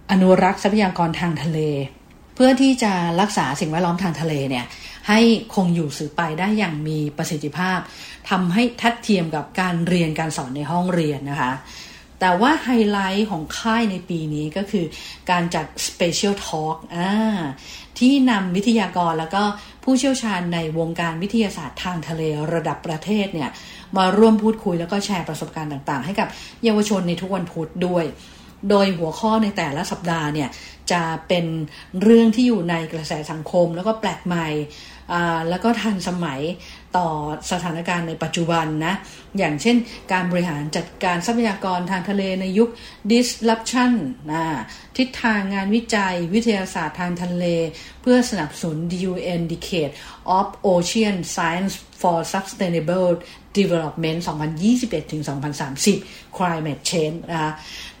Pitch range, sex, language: 165-205 Hz, female, English